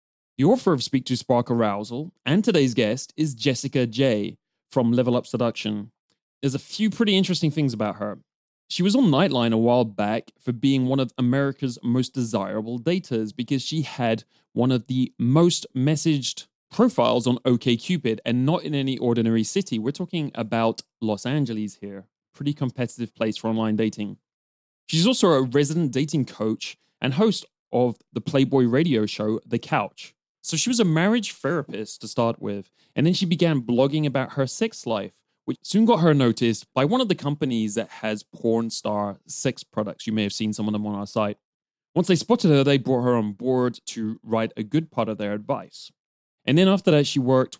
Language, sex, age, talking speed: English, male, 20-39, 190 wpm